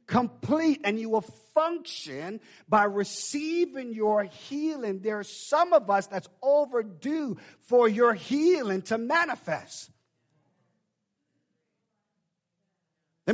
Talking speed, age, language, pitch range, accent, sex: 100 wpm, 50-69, English, 195-280 Hz, American, male